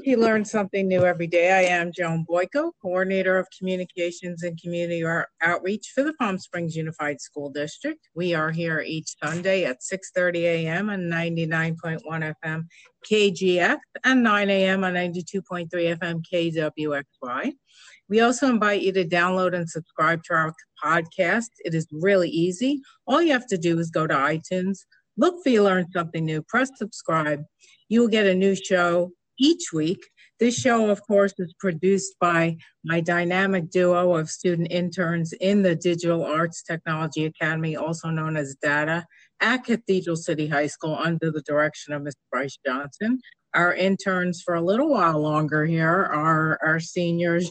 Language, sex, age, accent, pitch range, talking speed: English, female, 50-69, American, 160-190 Hz, 160 wpm